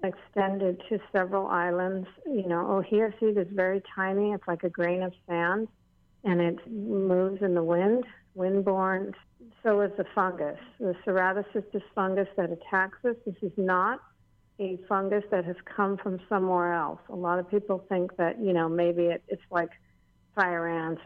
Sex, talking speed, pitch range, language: female, 170 wpm, 175-195 Hz, English